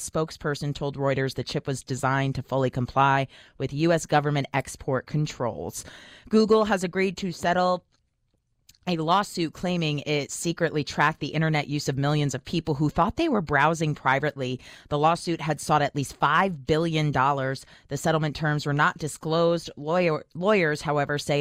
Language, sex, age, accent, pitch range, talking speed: English, female, 30-49, American, 140-165 Hz, 155 wpm